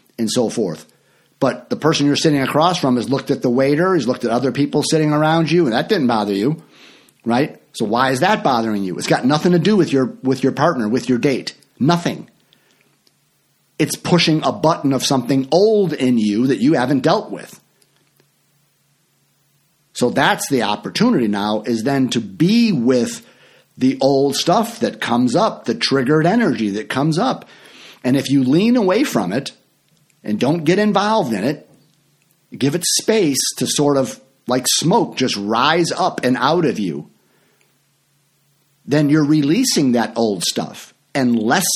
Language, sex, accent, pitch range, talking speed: English, male, American, 130-170 Hz, 170 wpm